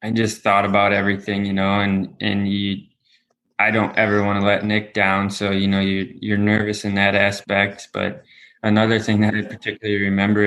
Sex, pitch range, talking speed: male, 100-110 Hz, 195 wpm